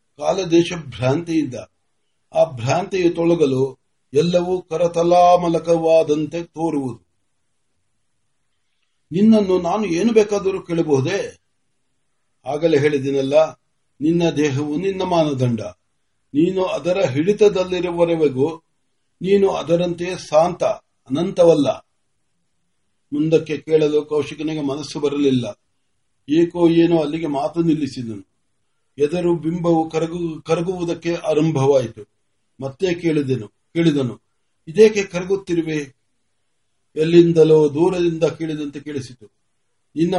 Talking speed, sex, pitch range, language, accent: 35 wpm, male, 135-170 Hz, Marathi, native